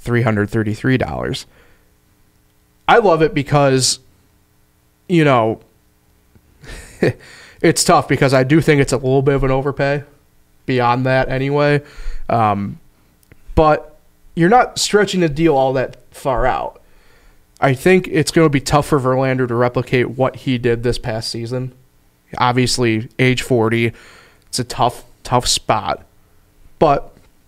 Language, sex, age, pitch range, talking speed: English, male, 20-39, 110-150 Hz, 130 wpm